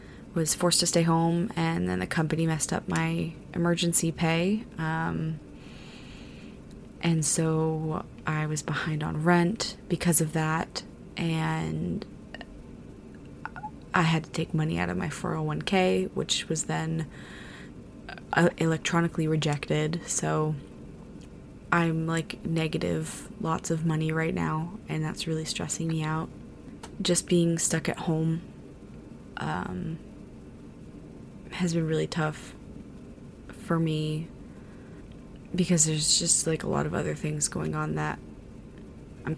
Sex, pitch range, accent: female, 155-170 Hz, American